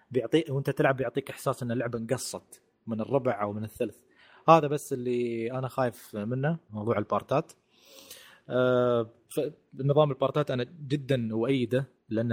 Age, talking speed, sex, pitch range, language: 20-39, 130 wpm, male, 120-145 Hz, Arabic